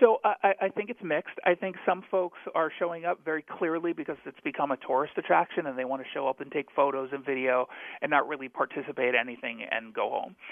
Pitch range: 140-170 Hz